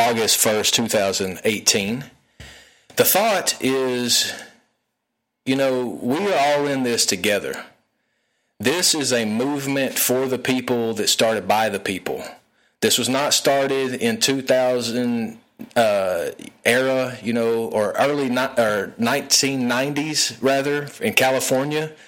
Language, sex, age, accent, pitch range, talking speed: English, male, 30-49, American, 115-140 Hz, 130 wpm